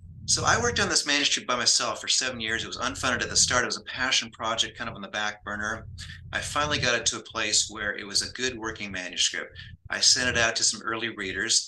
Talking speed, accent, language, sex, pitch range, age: 255 wpm, American, English, male, 100-120 Hz, 30-49